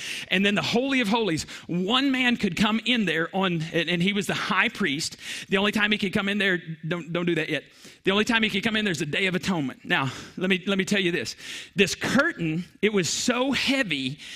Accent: American